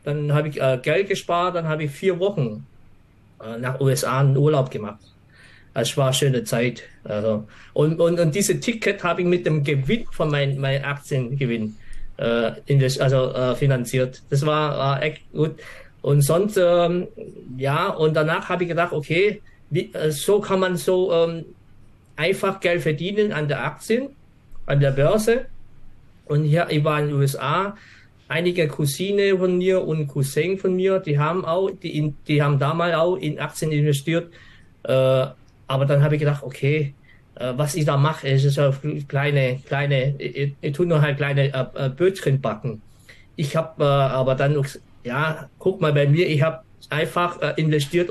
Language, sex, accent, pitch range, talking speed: German, male, German, 130-170 Hz, 175 wpm